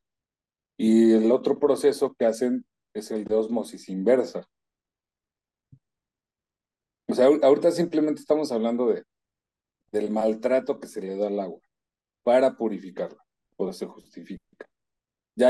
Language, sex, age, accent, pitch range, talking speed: Spanish, male, 40-59, Mexican, 105-120 Hz, 125 wpm